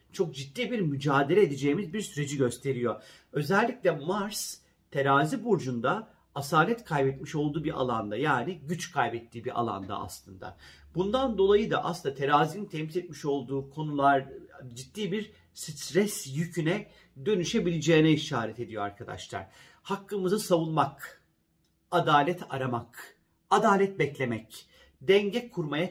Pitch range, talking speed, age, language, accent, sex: 135-190 Hz, 110 wpm, 40-59, Turkish, native, male